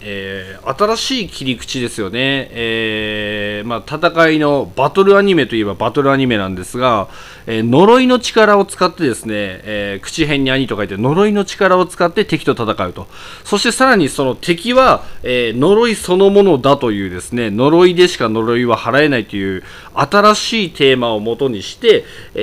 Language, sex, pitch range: Japanese, male, 110-180 Hz